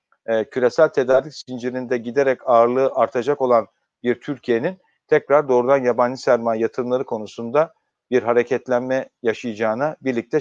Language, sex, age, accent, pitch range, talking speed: Turkish, male, 50-69, native, 120-150 Hz, 115 wpm